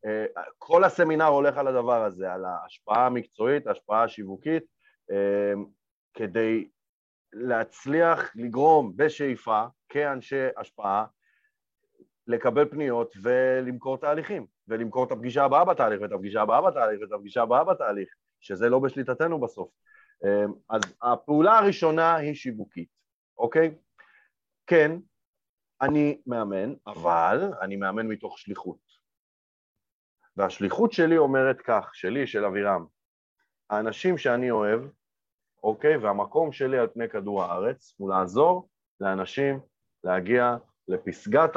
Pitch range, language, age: 115-165 Hz, Hebrew, 30-49